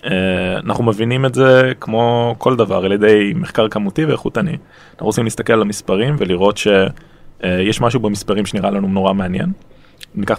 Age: 20-39